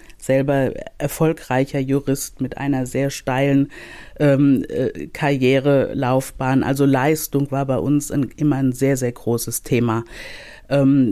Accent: German